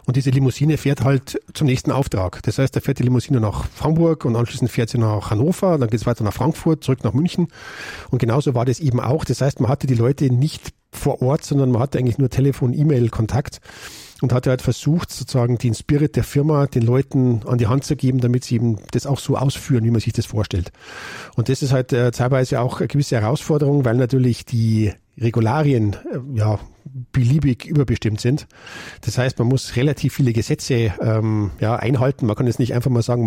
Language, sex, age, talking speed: German, male, 50-69, 215 wpm